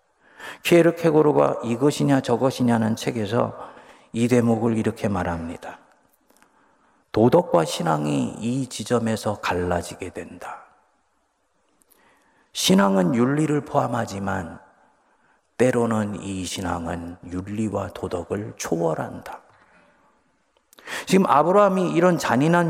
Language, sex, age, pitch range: Korean, male, 40-59, 105-135 Hz